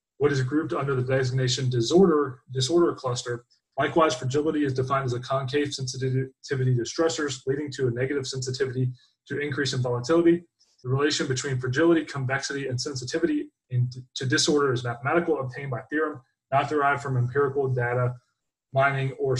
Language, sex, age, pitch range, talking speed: English, male, 20-39, 125-160 Hz, 155 wpm